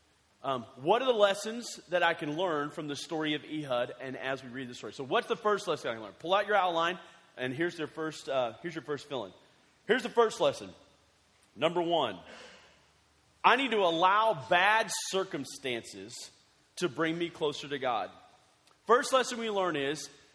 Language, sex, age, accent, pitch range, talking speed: English, male, 30-49, American, 135-205 Hz, 185 wpm